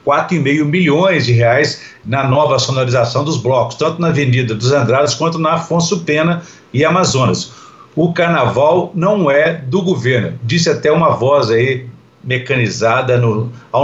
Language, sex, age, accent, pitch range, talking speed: Portuguese, male, 60-79, Brazilian, 125-155 Hz, 145 wpm